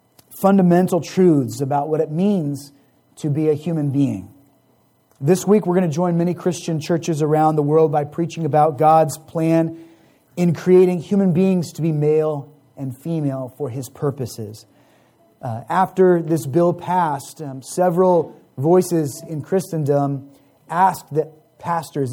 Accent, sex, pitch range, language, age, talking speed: American, male, 140-170 Hz, English, 30-49, 145 wpm